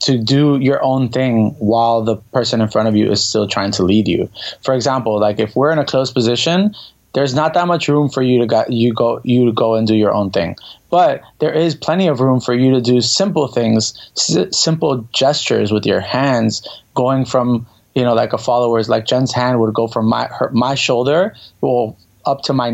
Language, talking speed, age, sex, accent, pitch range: English, 225 wpm, 20-39, male, American, 110-130 Hz